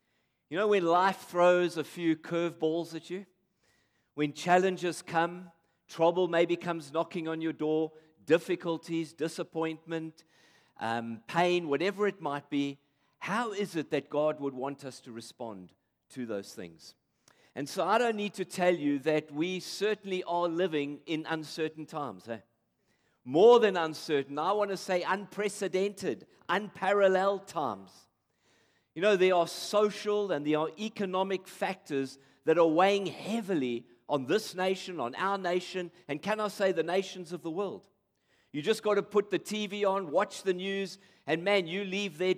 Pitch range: 160-195 Hz